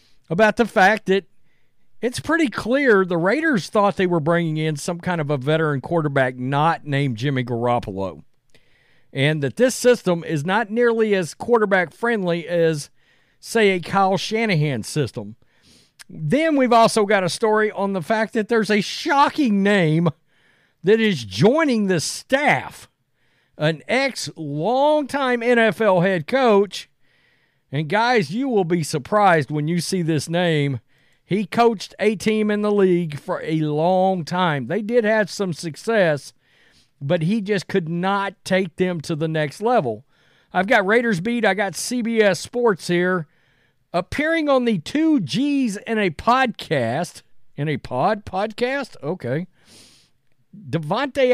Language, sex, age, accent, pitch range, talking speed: English, male, 50-69, American, 155-225 Hz, 145 wpm